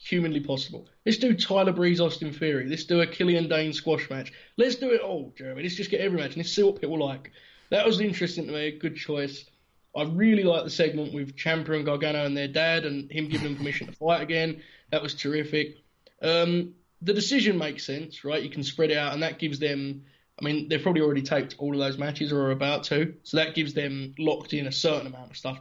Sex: male